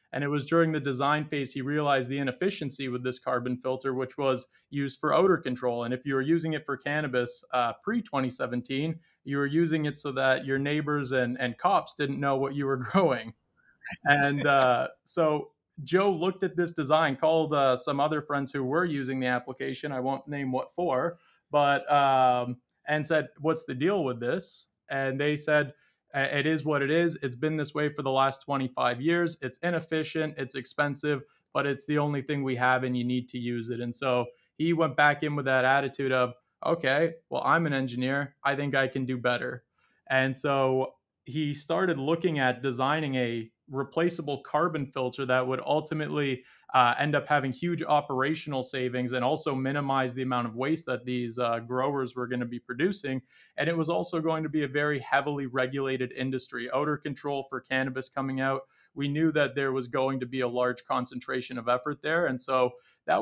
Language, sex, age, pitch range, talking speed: English, male, 20-39, 130-150 Hz, 195 wpm